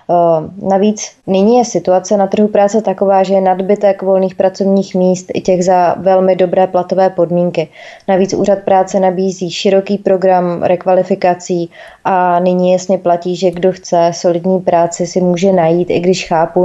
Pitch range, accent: 175-190 Hz, native